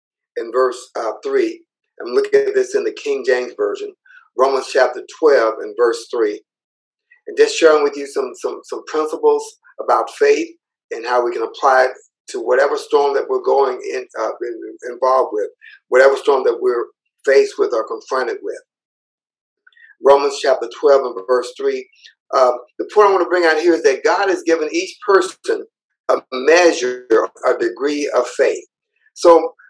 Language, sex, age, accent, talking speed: English, male, 50-69, American, 170 wpm